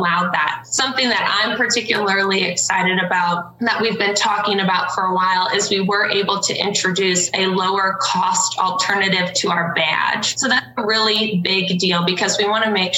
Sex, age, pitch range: female, 20-39, 175-200 Hz